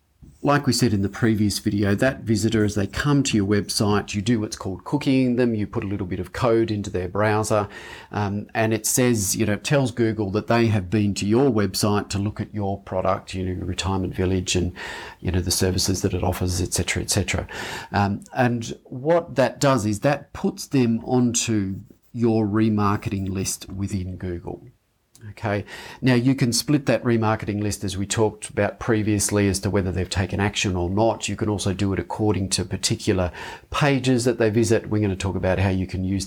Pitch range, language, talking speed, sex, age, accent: 95-115 Hz, English, 210 wpm, male, 40-59, Australian